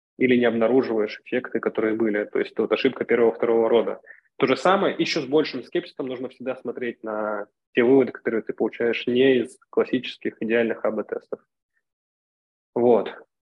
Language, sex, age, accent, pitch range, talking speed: Russian, male, 20-39, native, 115-135 Hz, 155 wpm